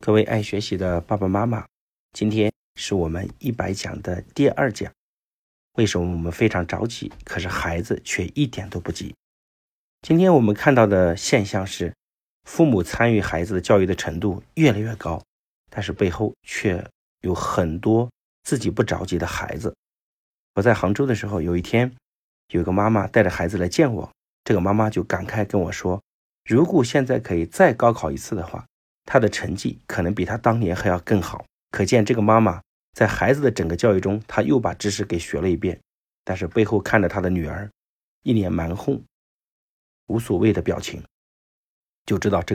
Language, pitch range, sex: Chinese, 90-110 Hz, male